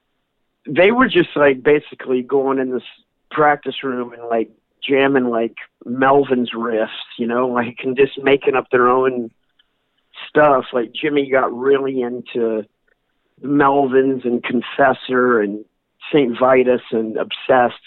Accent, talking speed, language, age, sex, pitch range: American, 130 wpm, English, 50-69, male, 115-145 Hz